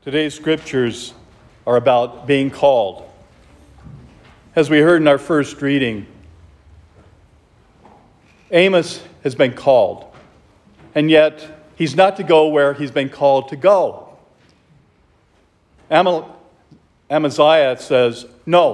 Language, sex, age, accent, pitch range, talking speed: English, male, 50-69, American, 120-175 Hz, 100 wpm